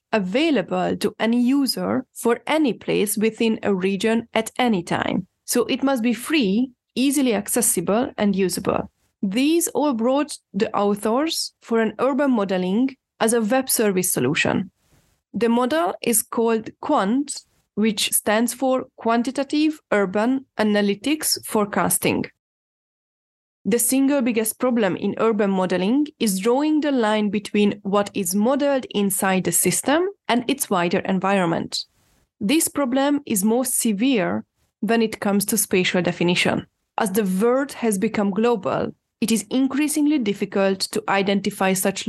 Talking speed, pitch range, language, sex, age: 135 wpm, 200-265 Hz, English, female, 20-39